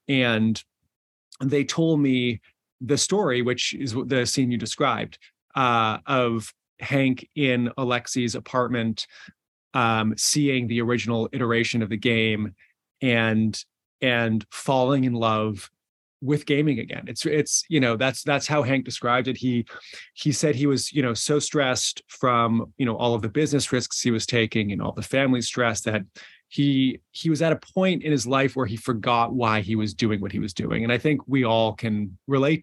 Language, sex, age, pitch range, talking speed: English, male, 30-49, 115-135 Hz, 180 wpm